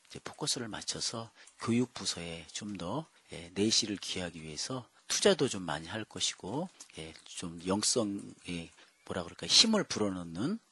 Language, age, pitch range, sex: Korean, 40-59, 85-120 Hz, male